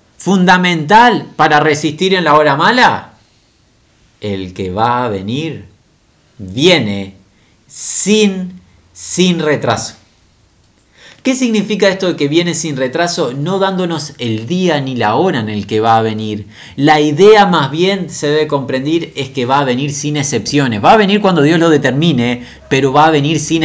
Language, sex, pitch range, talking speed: Spanish, male, 115-165 Hz, 160 wpm